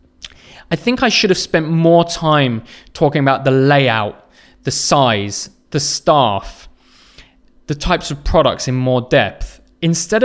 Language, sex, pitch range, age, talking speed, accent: English, male, 130-180 Hz, 20-39, 140 wpm, British